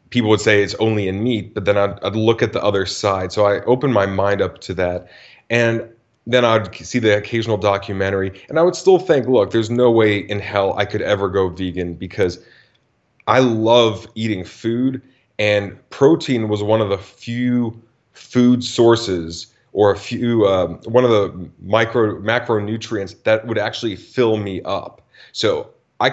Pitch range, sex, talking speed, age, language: 100-115 Hz, male, 180 wpm, 30-49, English